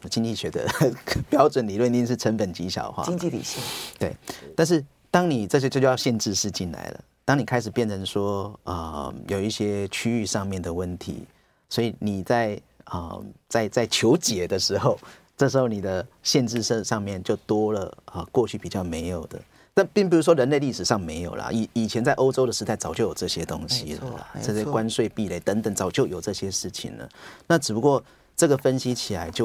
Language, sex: Chinese, male